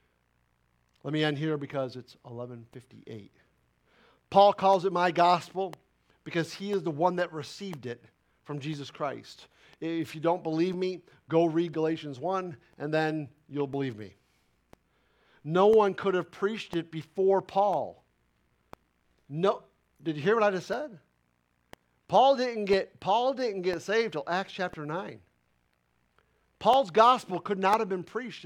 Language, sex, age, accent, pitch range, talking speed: English, male, 50-69, American, 145-195 Hz, 150 wpm